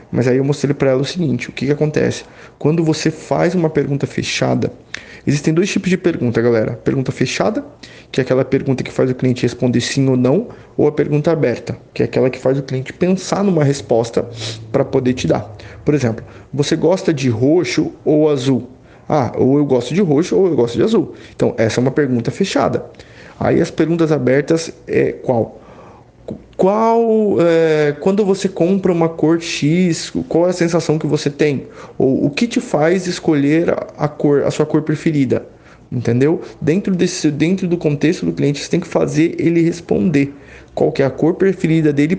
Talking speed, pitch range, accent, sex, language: 195 wpm, 135-170 Hz, Brazilian, male, Portuguese